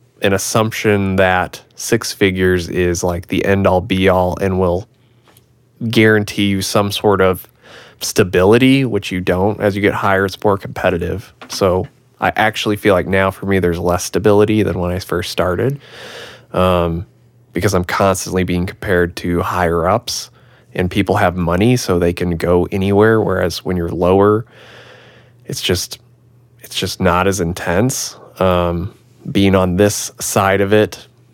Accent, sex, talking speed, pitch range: American, male, 155 wpm, 90-115 Hz